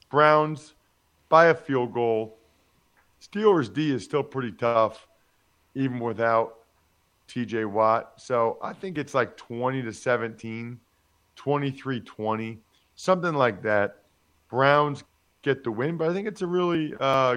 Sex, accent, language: male, American, English